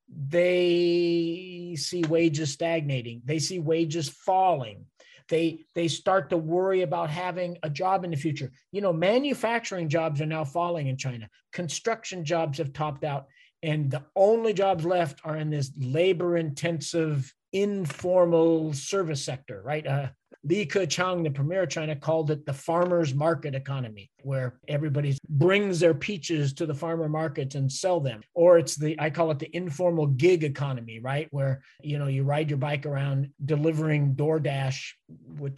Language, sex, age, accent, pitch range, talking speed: English, male, 40-59, American, 145-175 Hz, 160 wpm